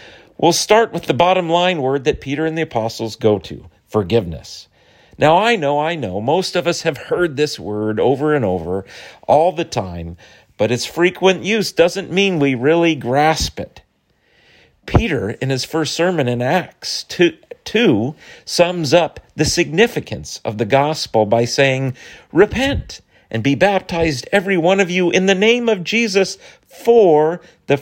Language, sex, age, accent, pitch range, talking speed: English, male, 40-59, American, 110-170 Hz, 160 wpm